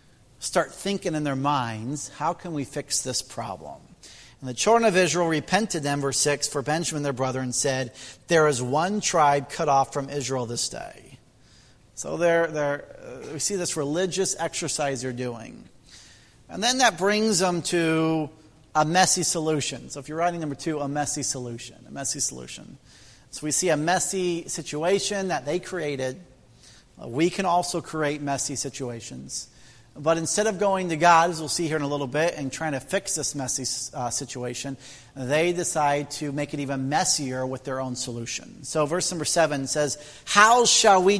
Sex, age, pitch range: male, 40-59, 130-180 Hz